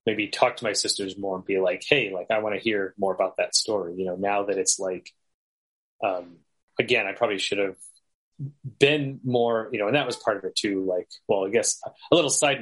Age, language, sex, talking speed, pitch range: 30-49, English, male, 235 wpm, 95-130 Hz